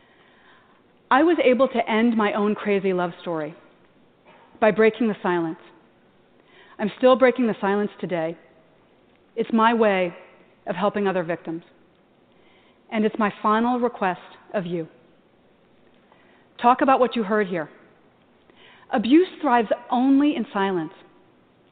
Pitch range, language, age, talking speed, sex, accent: 200-265 Hz, English, 40-59, 125 wpm, female, American